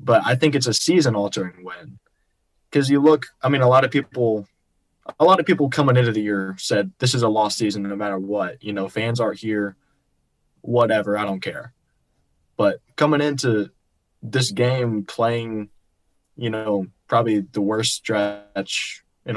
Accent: American